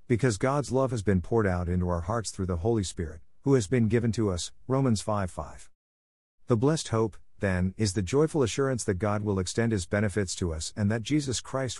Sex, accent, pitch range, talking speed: male, American, 90-115 Hz, 225 wpm